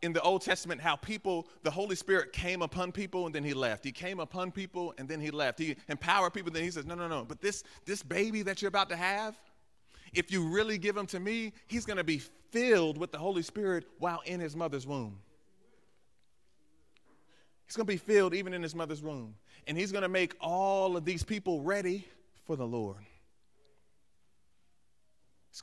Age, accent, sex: 30-49, American, male